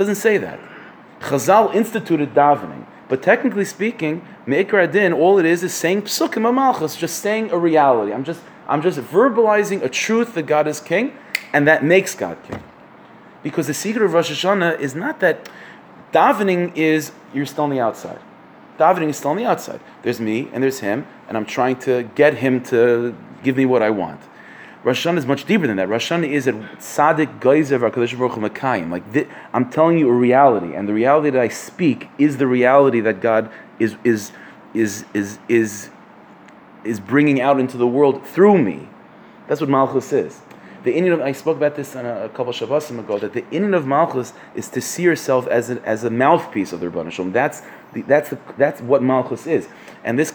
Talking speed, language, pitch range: 195 wpm, English, 120-165 Hz